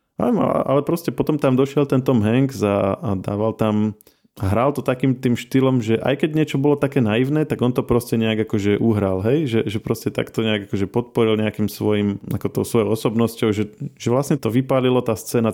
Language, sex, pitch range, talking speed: Slovak, male, 105-125 Hz, 195 wpm